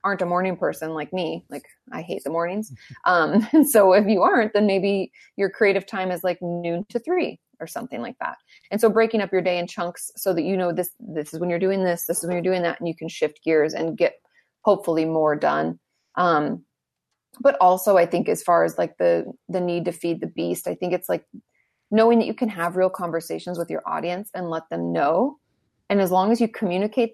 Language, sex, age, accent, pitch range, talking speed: English, female, 20-39, American, 170-210 Hz, 235 wpm